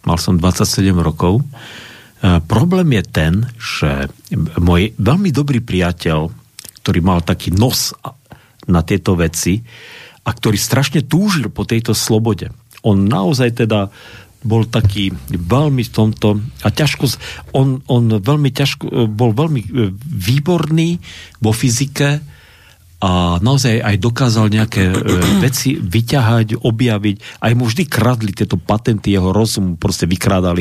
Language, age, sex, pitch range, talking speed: Slovak, 50-69, male, 90-125 Hz, 125 wpm